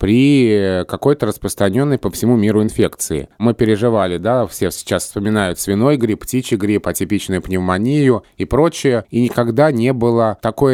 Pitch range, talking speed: 100-130 Hz, 145 wpm